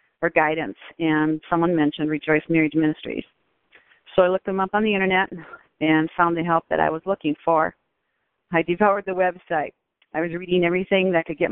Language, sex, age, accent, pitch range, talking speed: English, female, 40-59, American, 160-180 Hz, 195 wpm